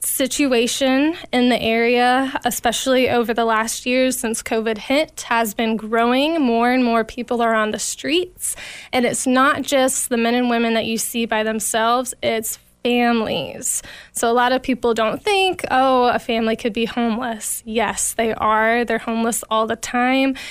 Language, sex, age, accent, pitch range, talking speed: English, female, 10-29, American, 230-270 Hz, 175 wpm